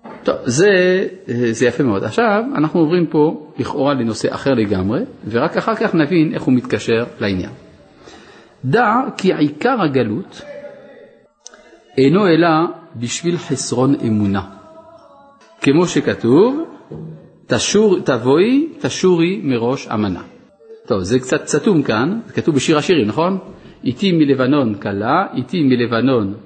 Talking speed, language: 115 wpm, Hebrew